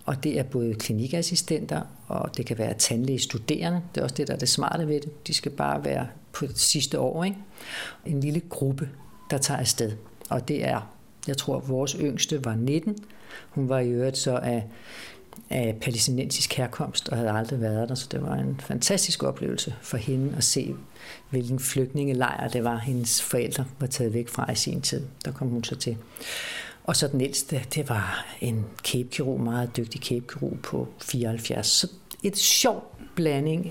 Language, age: Danish, 60-79